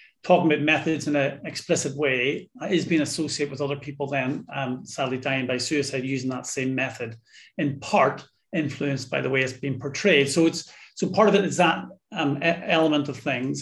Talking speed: 195 wpm